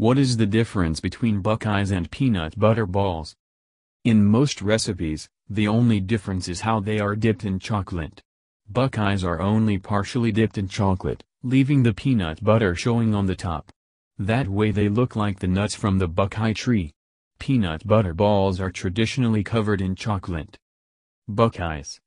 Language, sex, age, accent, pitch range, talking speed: English, male, 40-59, American, 85-115 Hz, 160 wpm